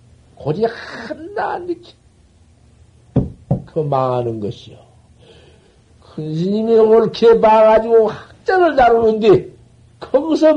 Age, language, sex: 60-79, Korean, male